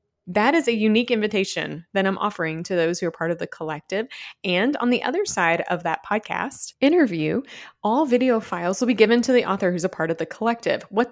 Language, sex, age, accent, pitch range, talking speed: English, female, 30-49, American, 170-220 Hz, 220 wpm